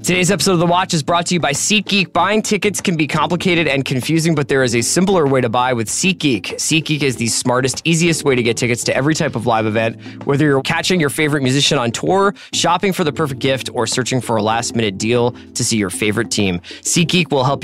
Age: 20-39